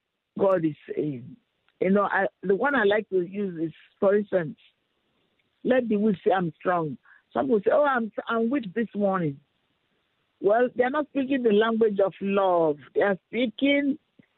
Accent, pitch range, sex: Nigerian, 190-250 Hz, male